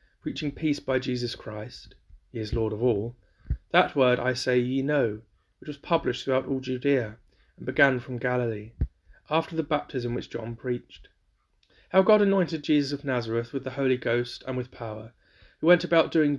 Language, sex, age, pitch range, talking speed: English, male, 30-49, 120-140 Hz, 180 wpm